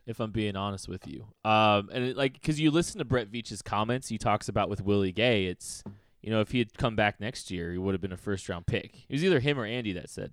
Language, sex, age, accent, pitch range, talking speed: English, male, 20-39, American, 100-120 Hz, 280 wpm